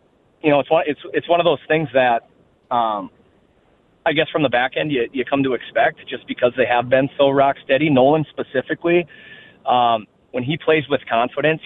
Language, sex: English, male